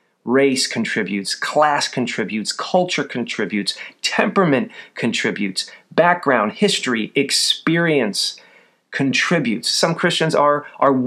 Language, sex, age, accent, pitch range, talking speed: English, male, 40-59, American, 125-180 Hz, 85 wpm